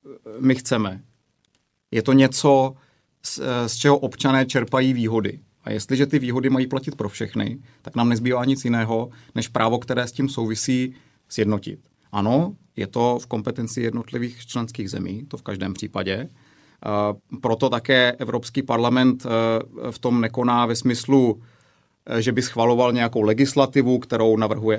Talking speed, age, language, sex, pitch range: 145 wpm, 30-49, Czech, male, 110-130 Hz